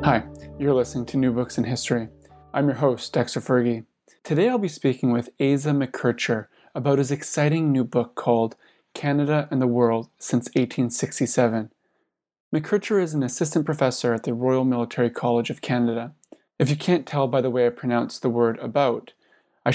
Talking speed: 175 wpm